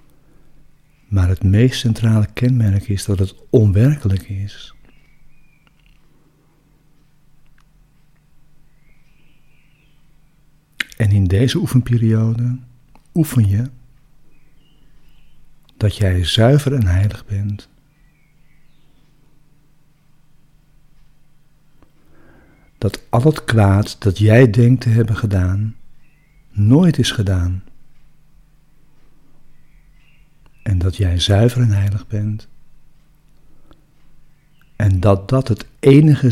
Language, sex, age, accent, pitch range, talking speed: Dutch, male, 60-79, Dutch, 110-150 Hz, 80 wpm